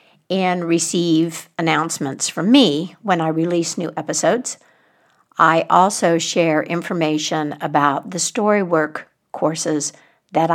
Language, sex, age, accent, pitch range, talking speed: English, female, 60-79, American, 160-210 Hz, 115 wpm